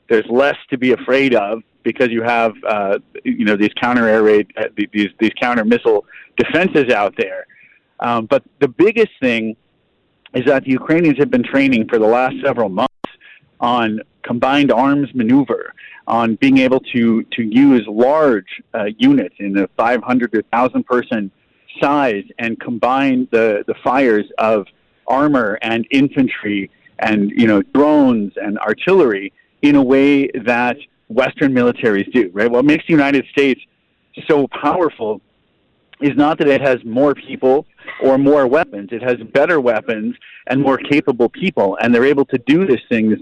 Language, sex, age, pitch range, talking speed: English, male, 40-59, 115-150 Hz, 160 wpm